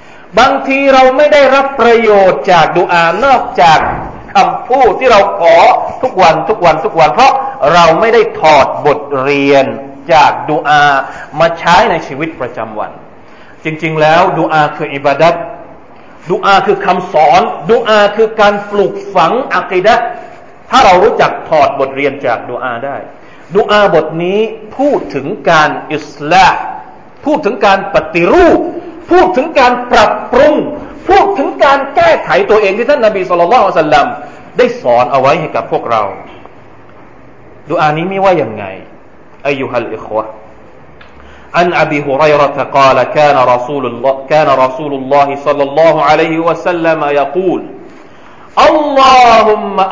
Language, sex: Thai, male